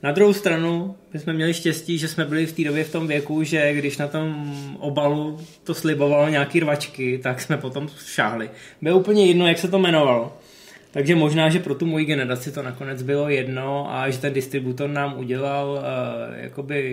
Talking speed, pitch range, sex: 195 wpm, 135-160 Hz, male